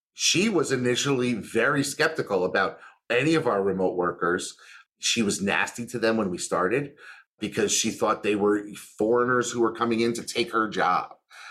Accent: American